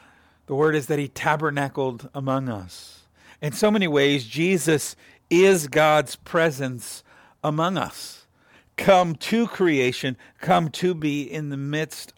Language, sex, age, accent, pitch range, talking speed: English, male, 50-69, American, 115-150 Hz, 135 wpm